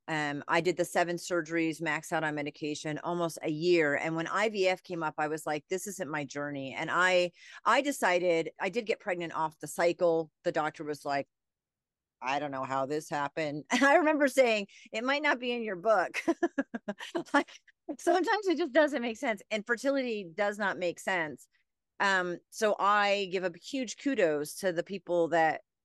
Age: 30-49